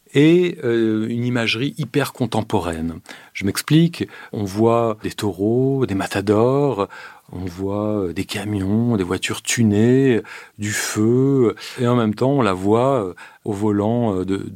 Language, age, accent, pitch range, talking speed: French, 40-59, French, 100-130 Hz, 140 wpm